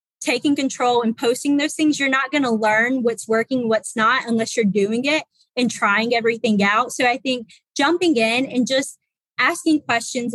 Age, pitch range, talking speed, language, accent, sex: 20-39, 225-265 Hz, 180 wpm, English, American, female